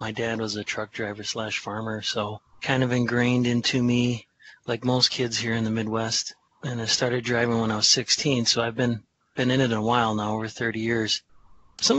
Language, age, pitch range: English, 30-49, 110-125 Hz